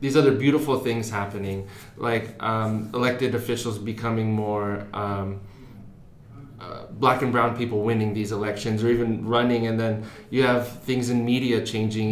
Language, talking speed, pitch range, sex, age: English, 155 wpm, 105-125 Hz, male, 20-39